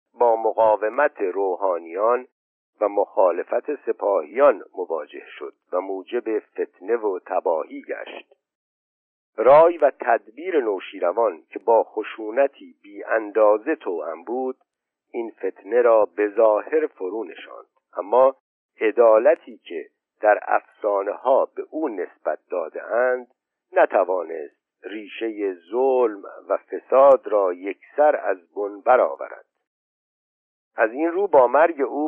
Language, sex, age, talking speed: Persian, male, 60-79, 105 wpm